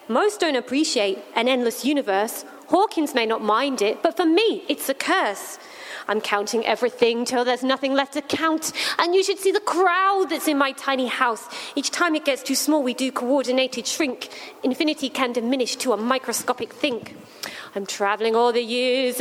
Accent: British